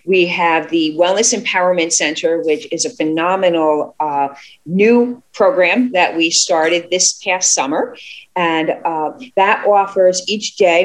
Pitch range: 170-220 Hz